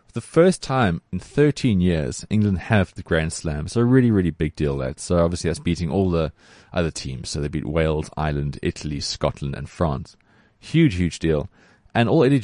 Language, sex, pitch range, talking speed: English, male, 85-110 Hz, 200 wpm